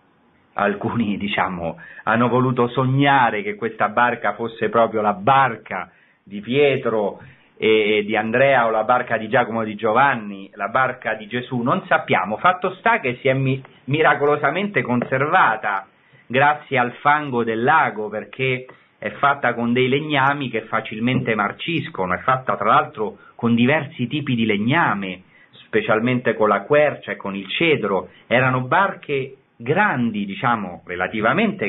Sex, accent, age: male, native, 40-59